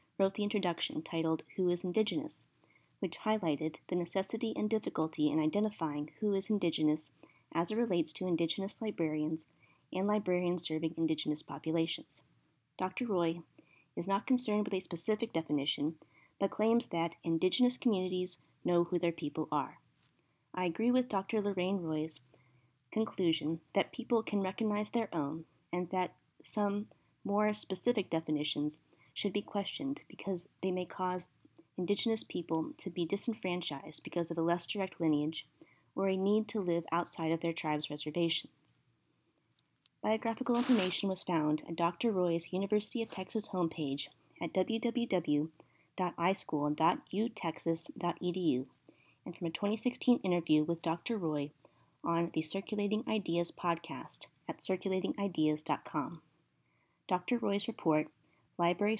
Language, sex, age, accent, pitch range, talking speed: English, female, 30-49, American, 160-205 Hz, 130 wpm